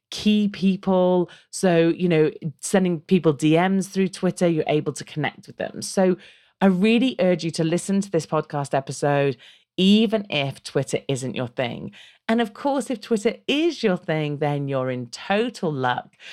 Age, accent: 40-59, British